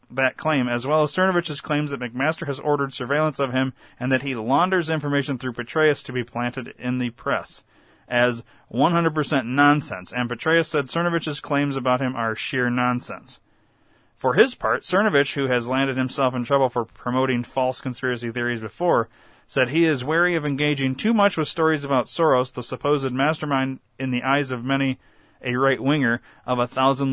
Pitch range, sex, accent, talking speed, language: 125-150 Hz, male, American, 180 wpm, English